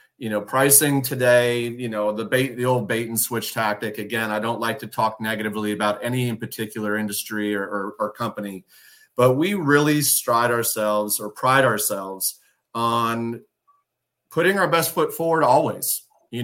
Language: English